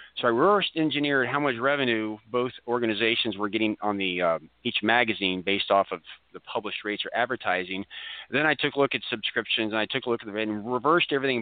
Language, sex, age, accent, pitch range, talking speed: English, male, 40-59, American, 105-120 Hz, 215 wpm